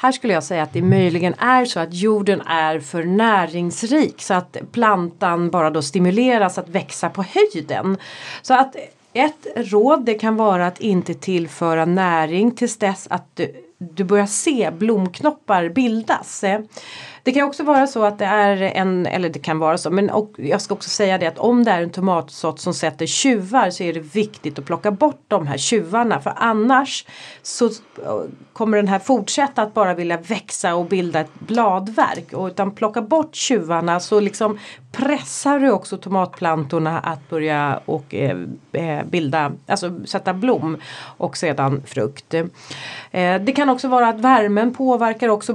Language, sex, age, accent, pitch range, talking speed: Swedish, female, 30-49, native, 170-230 Hz, 165 wpm